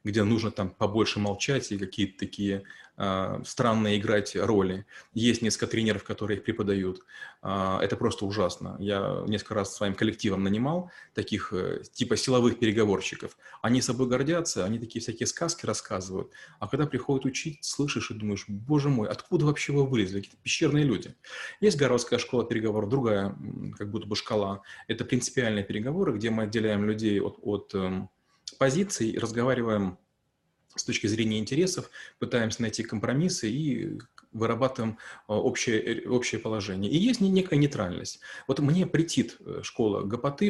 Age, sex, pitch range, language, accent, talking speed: 20-39, male, 105-130 Hz, Russian, native, 140 wpm